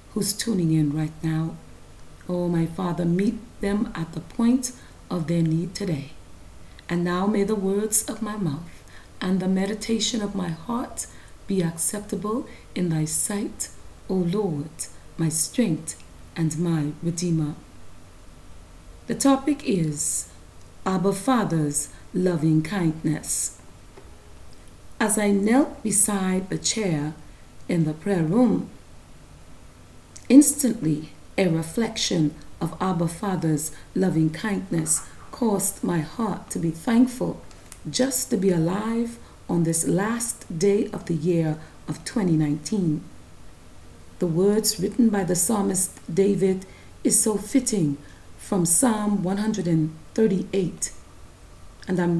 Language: English